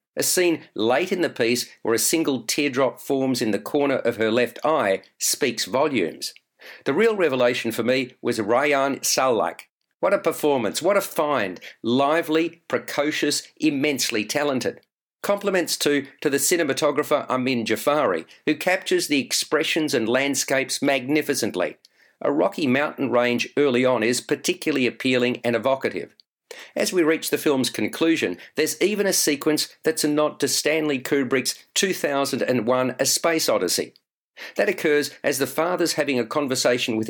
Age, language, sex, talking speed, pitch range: 50-69, English, male, 150 wpm, 130-165 Hz